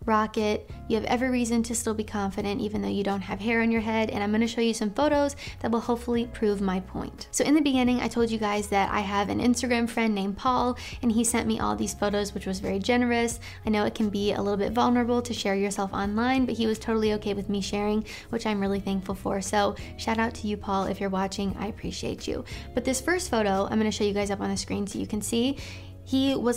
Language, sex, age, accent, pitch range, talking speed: English, female, 20-39, American, 200-240 Hz, 260 wpm